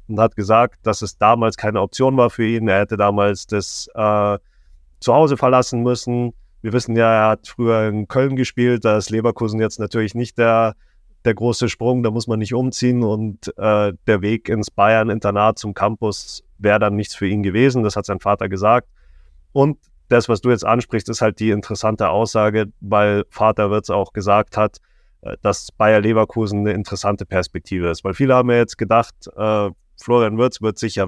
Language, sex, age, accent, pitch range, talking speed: German, male, 30-49, German, 105-120 Hz, 185 wpm